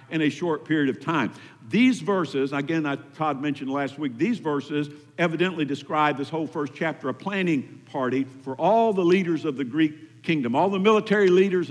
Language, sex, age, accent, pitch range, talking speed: English, male, 50-69, American, 140-170 Hz, 190 wpm